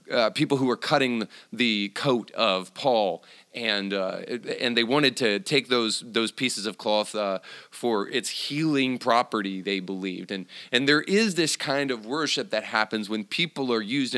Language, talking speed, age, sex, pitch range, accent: English, 180 wpm, 30-49, male, 105-140 Hz, American